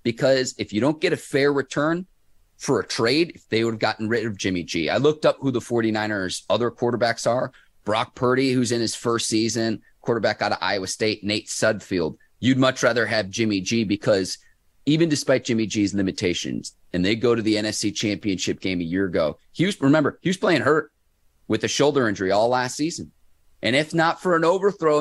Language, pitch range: English, 100-130 Hz